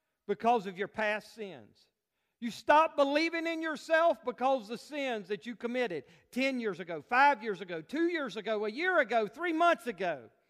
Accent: American